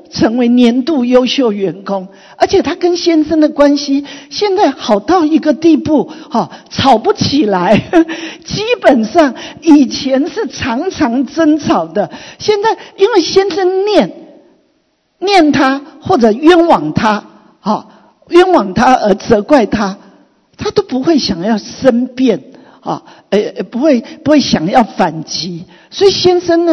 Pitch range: 220-315 Hz